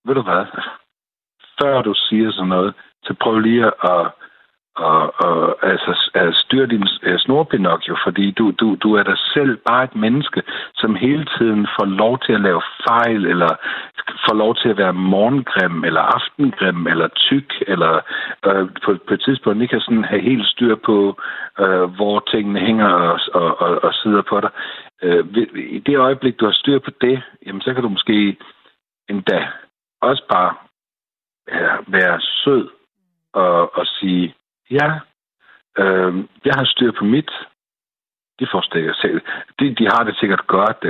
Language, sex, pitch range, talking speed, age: Danish, male, 100-135 Hz, 160 wpm, 60-79